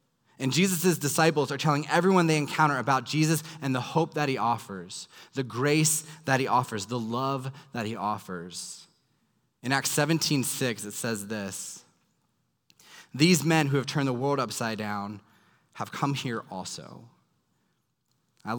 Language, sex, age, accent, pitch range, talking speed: English, male, 20-39, American, 130-170 Hz, 150 wpm